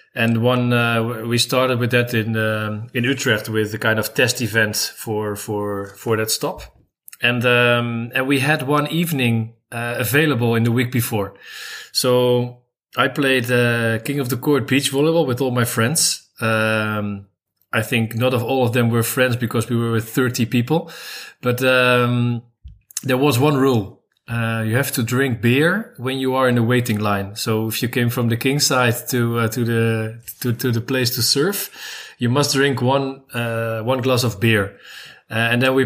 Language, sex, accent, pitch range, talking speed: German, male, Dutch, 115-130 Hz, 195 wpm